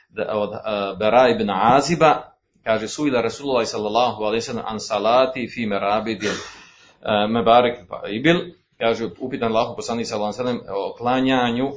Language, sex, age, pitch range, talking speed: Croatian, male, 40-59, 110-145 Hz, 165 wpm